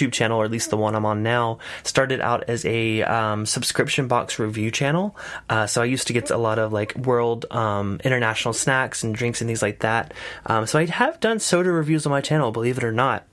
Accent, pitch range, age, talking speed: American, 110-140 Hz, 20-39, 235 wpm